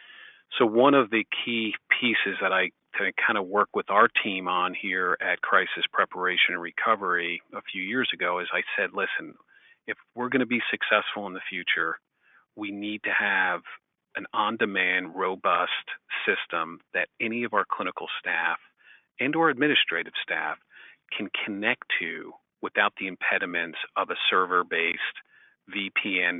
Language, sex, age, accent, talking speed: English, male, 40-59, American, 150 wpm